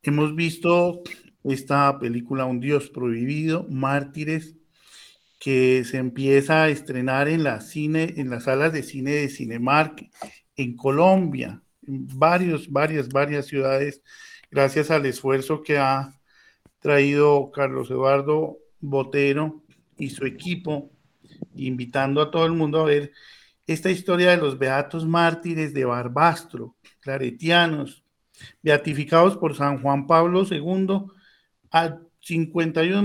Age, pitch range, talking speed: 50-69, 135-165 Hz, 120 wpm